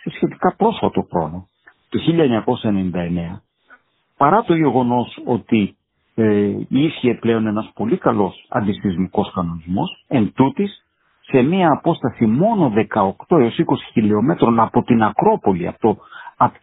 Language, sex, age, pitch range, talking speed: Greek, male, 50-69, 100-145 Hz, 115 wpm